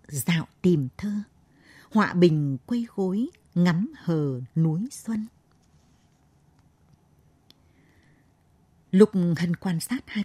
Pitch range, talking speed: 160-210 Hz, 95 wpm